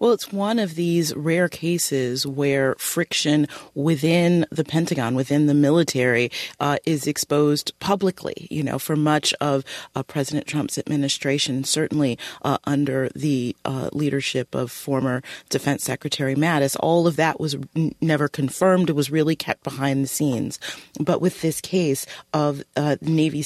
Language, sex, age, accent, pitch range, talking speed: English, female, 30-49, American, 135-160 Hz, 150 wpm